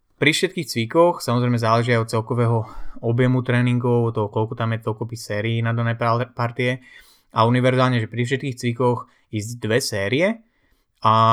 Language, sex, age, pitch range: Slovak, male, 20-39, 115-130 Hz